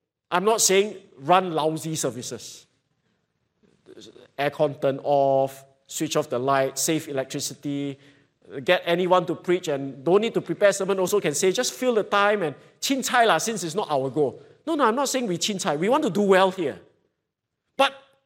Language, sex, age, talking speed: English, male, 50-69, 180 wpm